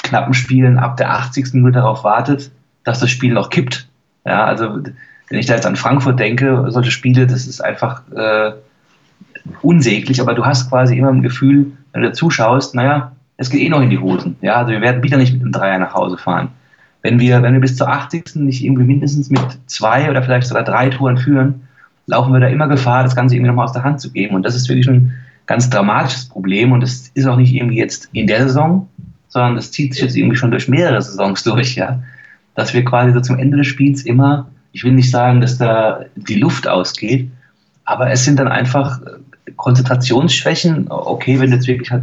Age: 30-49